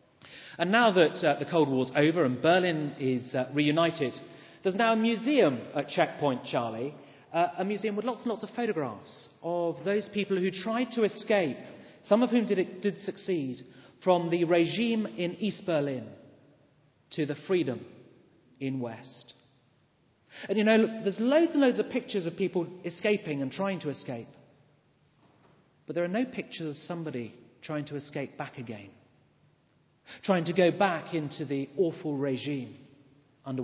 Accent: British